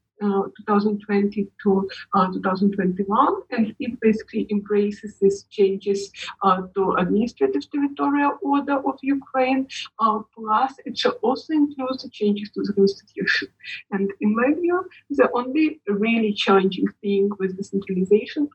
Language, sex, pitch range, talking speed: English, female, 200-250 Hz, 130 wpm